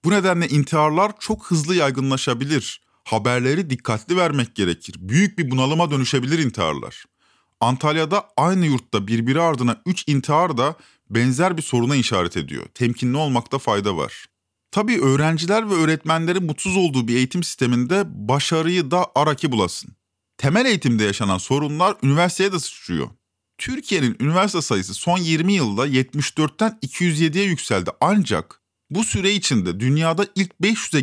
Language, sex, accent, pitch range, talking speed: Turkish, male, native, 120-175 Hz, 130 wpm